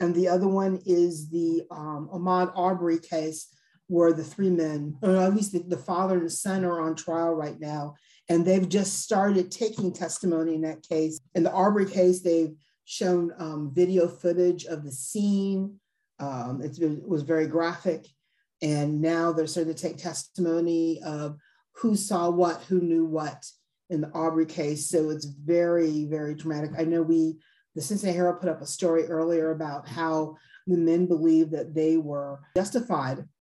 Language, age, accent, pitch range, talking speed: English, 40-59, American, 150-180 Hz, 175 wpm